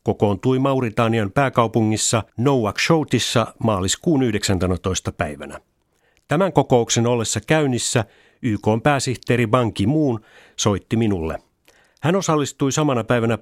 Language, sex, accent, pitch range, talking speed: Finnish, male, native, 105-135 Hz, 95 wpm